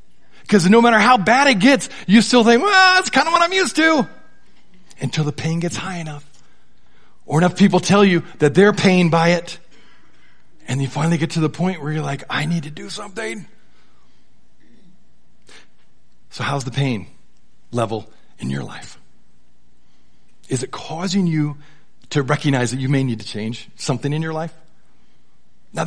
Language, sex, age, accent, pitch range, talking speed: English, male, 40-59, American, 140-185 Hz, 170 wpm